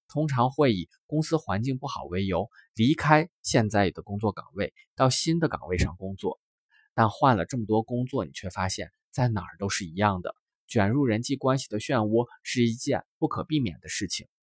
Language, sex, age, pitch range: Chinese, male, 20-39, 100-145 Hz